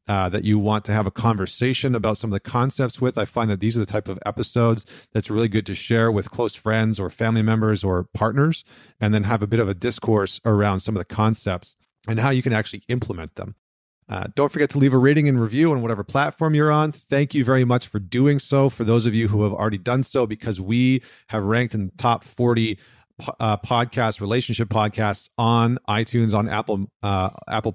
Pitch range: 100-120 Hz